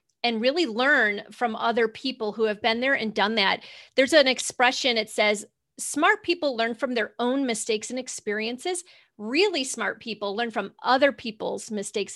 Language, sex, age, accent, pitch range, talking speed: English, female, 40-59, American, 220-265 Hz, 175 wpm